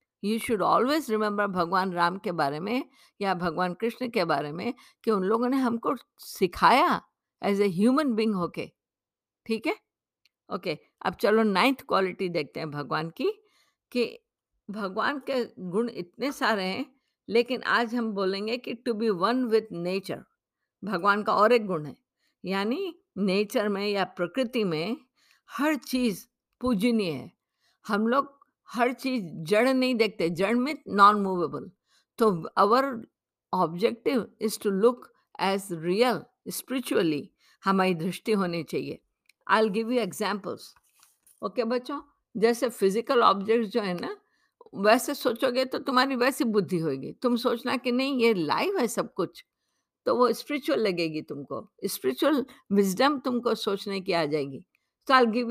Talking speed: 150 wpm